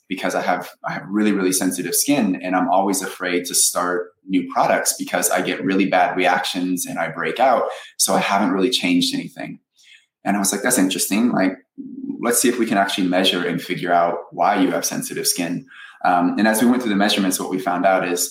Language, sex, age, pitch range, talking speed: English, male, 20-39, 90-145 Hz, 225 wpm